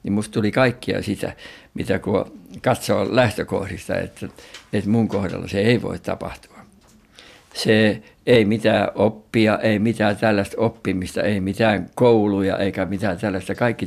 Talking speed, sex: 140 wpm, male